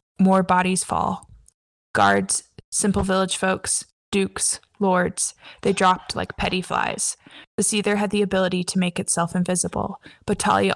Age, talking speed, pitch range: 10-29, 140 wpm, 180-200 Hz